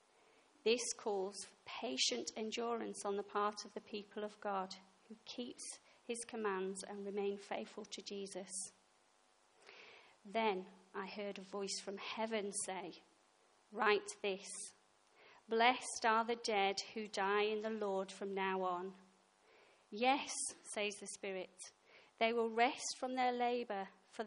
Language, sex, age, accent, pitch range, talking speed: English, female, 30-49, British, 200-240 Hz, 135 wpm